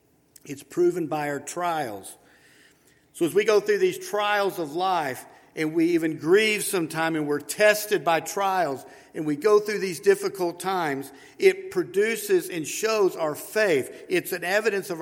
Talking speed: 165 wpm